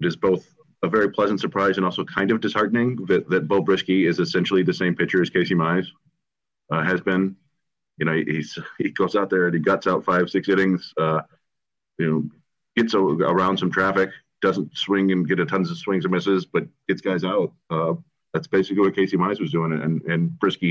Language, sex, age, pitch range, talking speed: English, male, 30-49, 85-95 Hz, 210 wpm